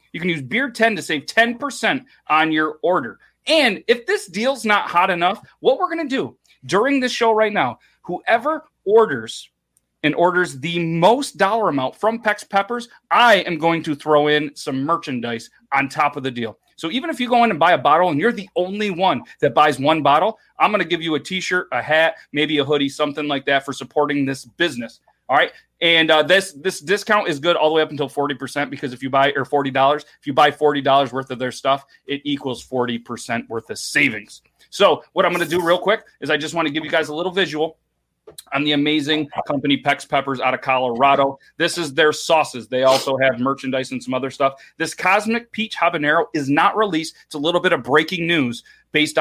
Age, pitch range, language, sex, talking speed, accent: 30-49, 140-180 Hz, English, male, 225 wpm, American